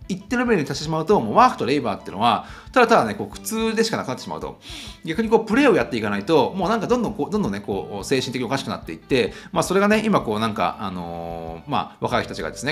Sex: male